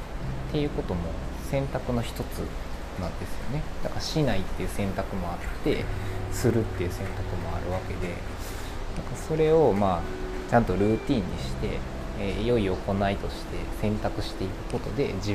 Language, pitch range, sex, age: Japanese, 85-110 Hz, male, 20-39